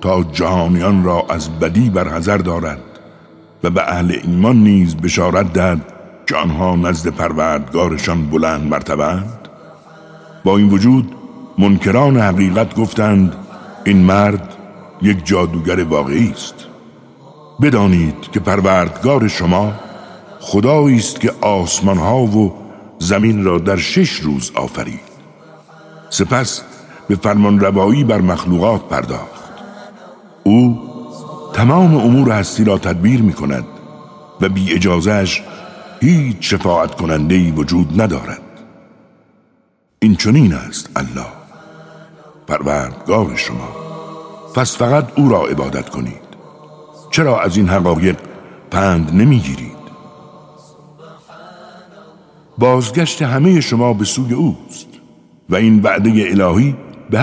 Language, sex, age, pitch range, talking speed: Persian, male, 60-79, 90-125 Hz, 105 wpm